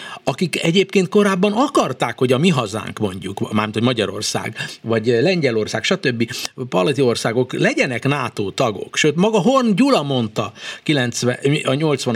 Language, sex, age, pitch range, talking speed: Hungarian, male, 60-79, 125-185 Hz, 135 wpm